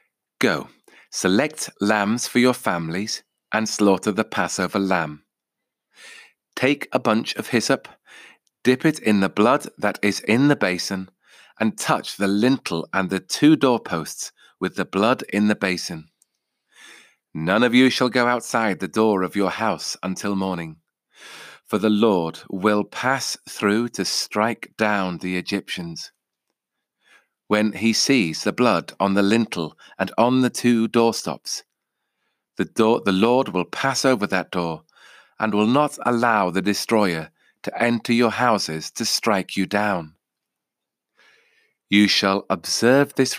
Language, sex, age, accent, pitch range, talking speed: English, male, 30-49, British, 95-120 Hz, 140 wpm